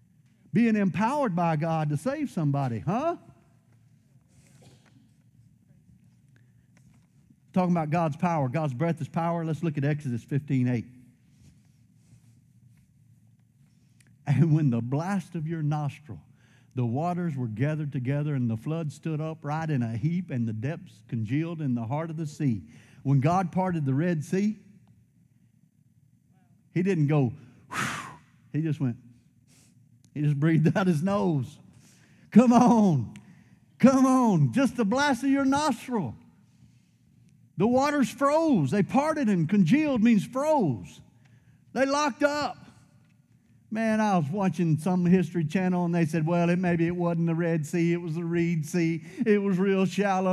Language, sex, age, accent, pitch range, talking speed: English, male, 50-69, American, 135-190 Hz, 145 wpm